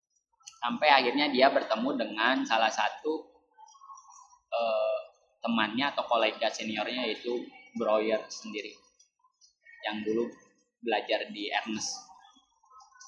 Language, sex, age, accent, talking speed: Indonesian, male, 20-39, native, 90 wpm